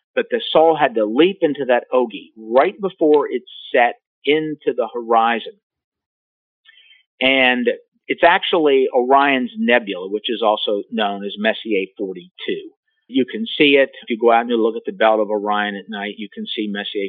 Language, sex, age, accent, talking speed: English, male, 50-69, American, 175 wpm